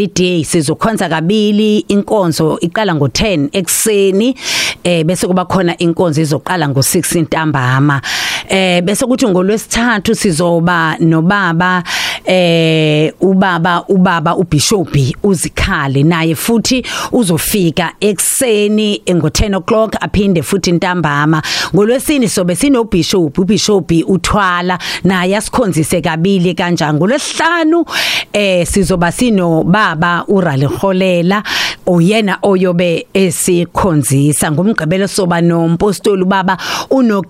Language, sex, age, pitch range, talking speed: English, female, 40-59, 170-205 Hz, 115 wpm